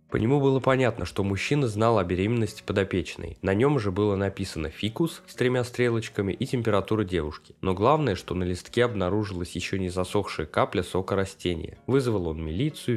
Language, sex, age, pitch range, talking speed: Russian, male, 20-39, 95-120 Hz, 170 wpm